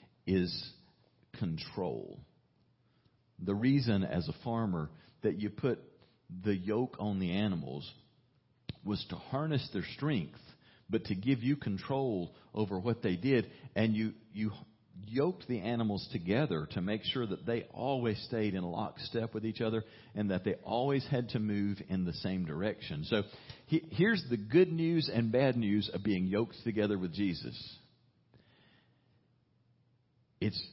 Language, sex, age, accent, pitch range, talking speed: English, male, 50-69, American, 100-135 Hz, 145 wpm